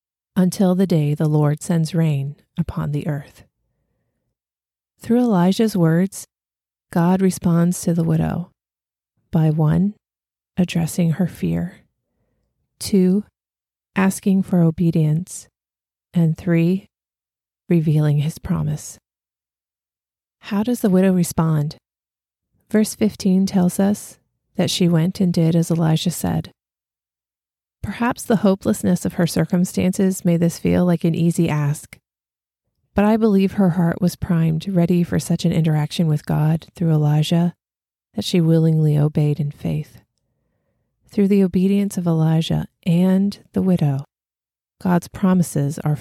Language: English